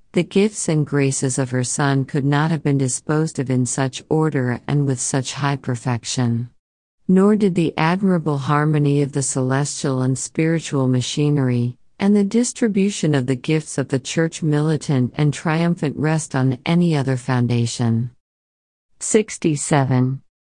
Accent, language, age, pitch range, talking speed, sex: American, English, 50-69, 130-165 Hz, 145 wpm, female